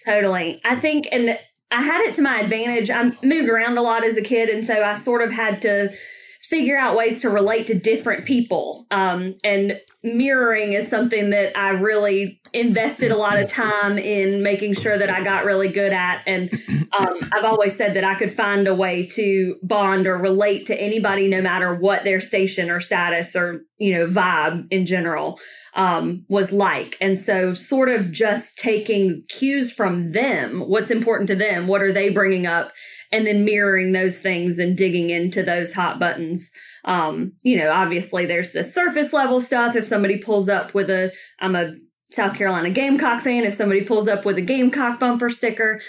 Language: English